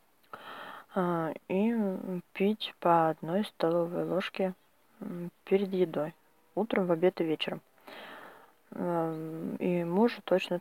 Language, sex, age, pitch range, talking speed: Russian, female, 20-39, 165-185 Hz, 90 wpm